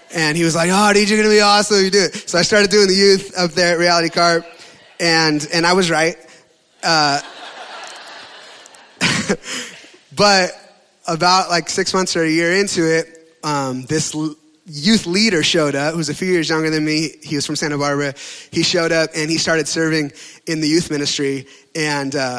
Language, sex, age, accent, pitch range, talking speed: English, male, 20-39, American, 150-175 Hz, 195 wpm